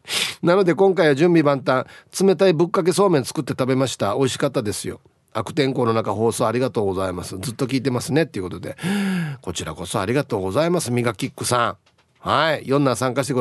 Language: Japanese